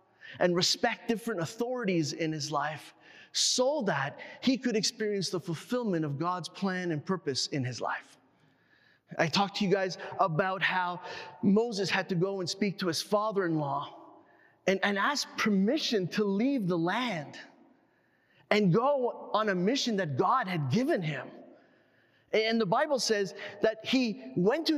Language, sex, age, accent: English, male, 30-49, American